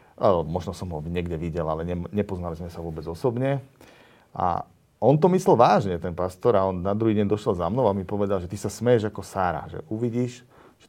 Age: 40-59